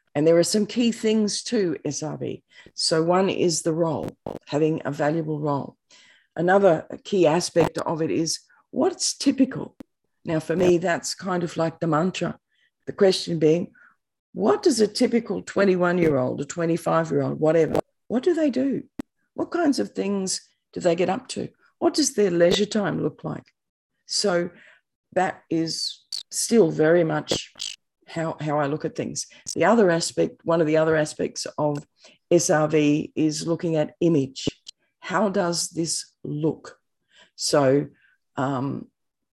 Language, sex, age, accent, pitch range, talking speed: English, female, 50-69, Australian, 150-180 Hz, 150 wpm